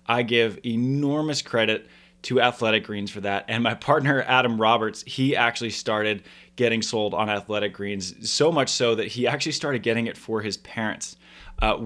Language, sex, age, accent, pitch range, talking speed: English, male, 20-39, American, 105-120 Hz, 175 wpm